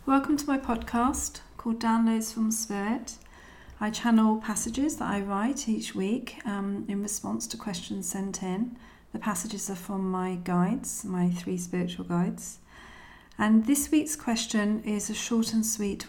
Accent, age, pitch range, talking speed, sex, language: British, 40-59, 190-230 Hz, 155 wpm, female, English